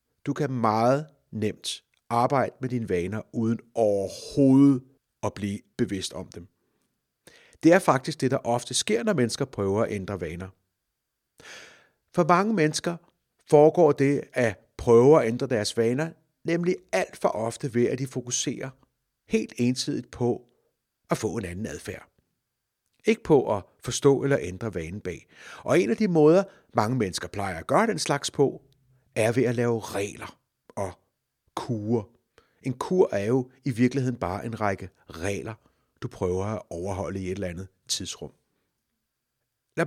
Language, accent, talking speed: Danish, native, 155 wpm